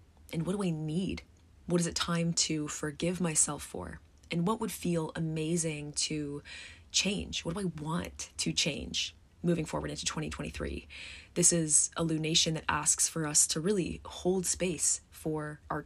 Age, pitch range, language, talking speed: 20-39, 150-170 Hz, English, 165 wpm